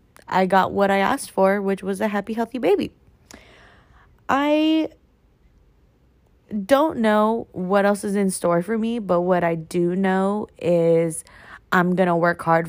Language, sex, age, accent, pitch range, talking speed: English, female, 20-39, American, 165-205 Hz, 155 wpm